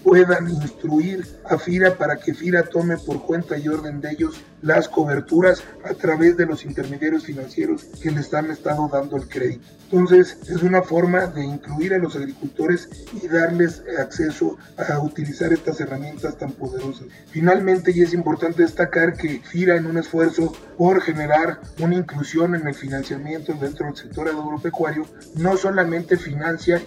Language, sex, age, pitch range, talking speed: Spanish, male, 40-59, 150-175 Hz, 155 wpm